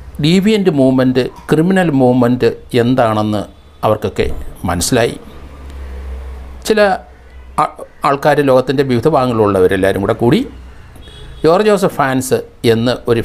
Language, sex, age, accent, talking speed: Malayalam, male, 60-79, native, 85 wpm